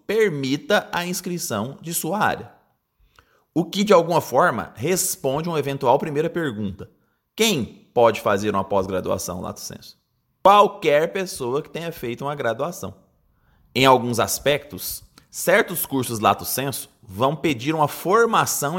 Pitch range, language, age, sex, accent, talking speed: 115-165 Hz, Portuguese, 20-39, male, Brazilian, 135 wpm